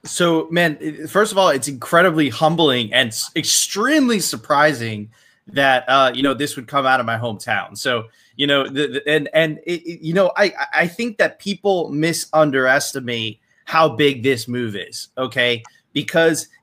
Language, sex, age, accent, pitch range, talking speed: English, male, 20-39, American, 125-155 Hz, 170 wpm